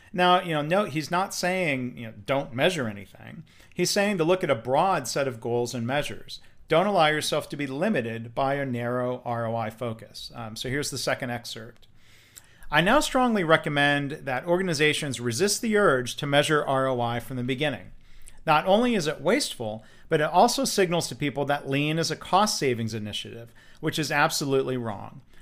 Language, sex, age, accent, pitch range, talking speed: English, male, 40-59, American, 120-170 Hz, 185 wpm